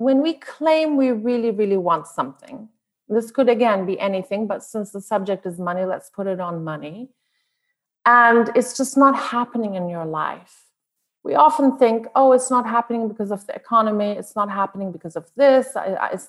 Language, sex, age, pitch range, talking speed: English, female, 30-49, 190-245 Hz, 185 wpm